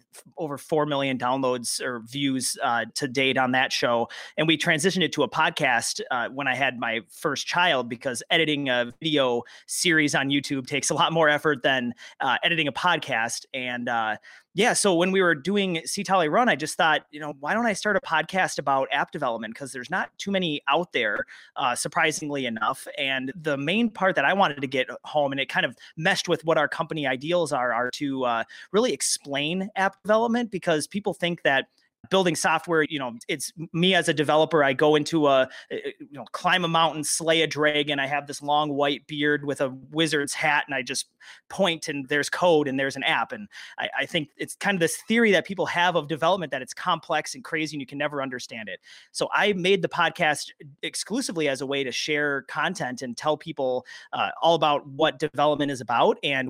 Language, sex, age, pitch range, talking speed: English, male, 30-49, 140-170 Hz, 210 wpm